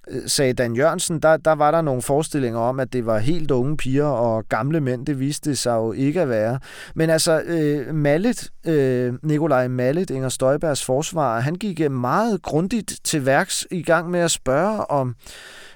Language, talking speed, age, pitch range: Danish, 185 wpm, 30-49, 125-160 Hz